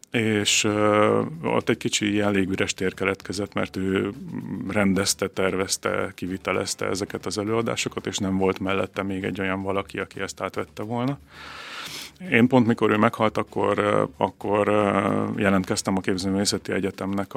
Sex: male